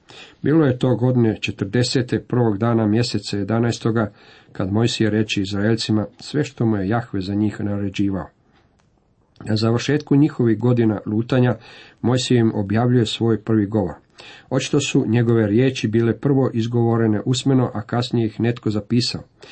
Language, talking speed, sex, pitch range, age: Croatian, 140 wpm, male, 110-130 Hz, 50-69